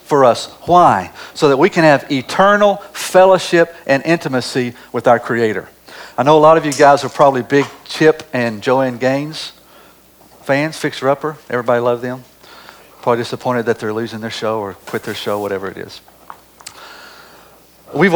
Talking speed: 160 wpm